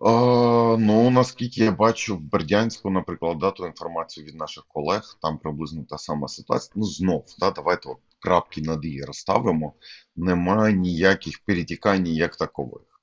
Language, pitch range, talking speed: Ukrainian, 80-100 Hz, 145 wpm